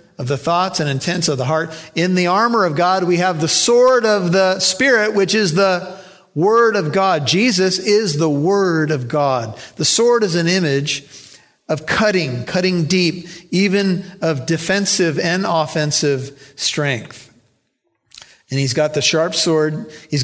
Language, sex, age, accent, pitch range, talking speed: English, male, 50-69, American, 145-180 Hz, 160 wpm